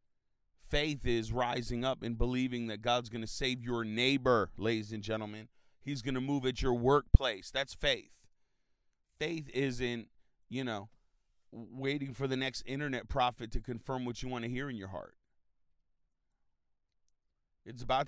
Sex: male